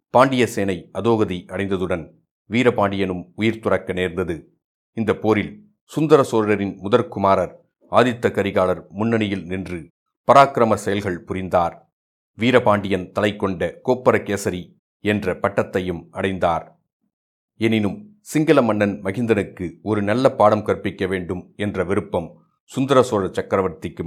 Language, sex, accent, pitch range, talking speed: Tamil, male, native, 95-115 Hz, 100 wpm